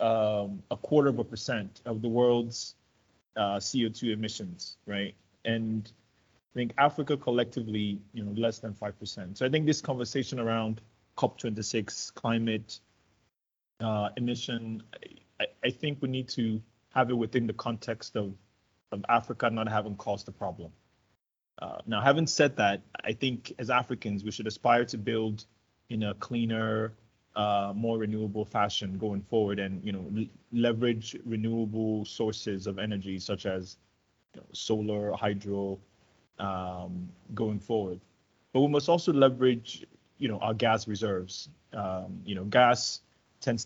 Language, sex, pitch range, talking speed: English, male, 105-120 Hz, 145 wpm